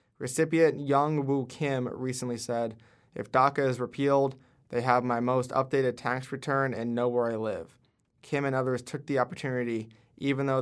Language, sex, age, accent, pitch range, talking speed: English, male, 20-39, American, 120-135 Hz, 170 wpm